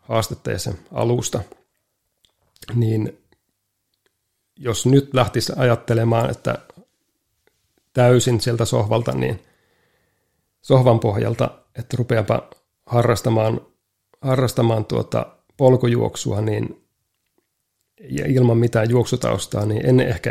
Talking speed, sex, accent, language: 80 wpm, male, native, Finnish